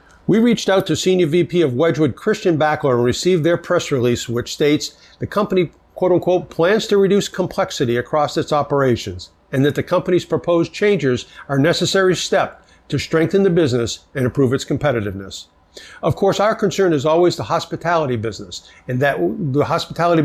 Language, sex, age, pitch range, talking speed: English, male, 60-79, 125-175 Hz, 175 wpm